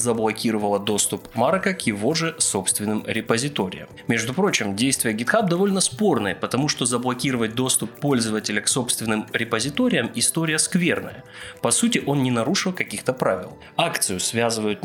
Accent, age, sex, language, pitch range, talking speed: native, 20-39, male, Russian, 110-155 Hz, 135 wpm